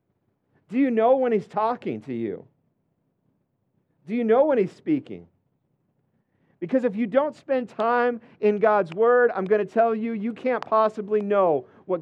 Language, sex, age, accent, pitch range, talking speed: English, male, 50-69, American, 185-235 Hz, 165 wpm